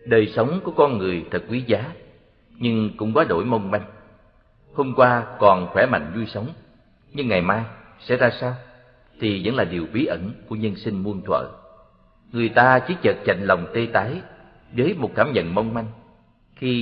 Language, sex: Vietnamese, male